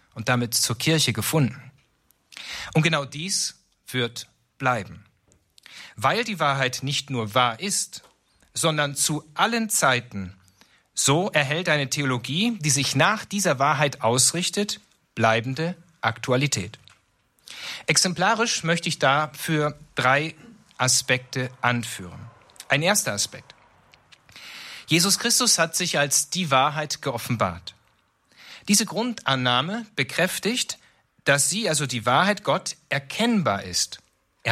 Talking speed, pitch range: 110 wpm, 125-170 Hz